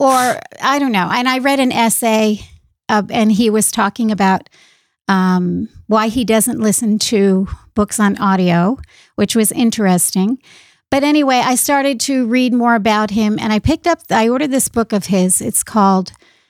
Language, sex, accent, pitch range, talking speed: English, female, American, 205-260 Hz, 175 wpm